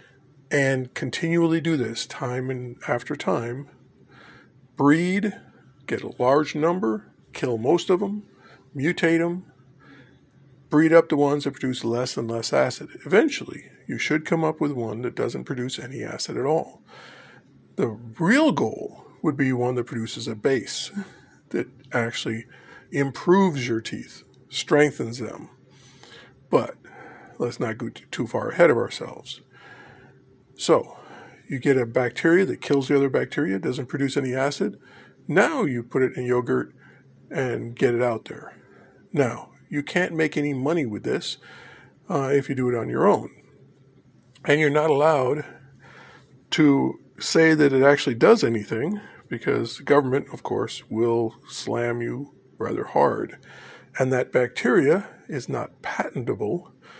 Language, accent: English, American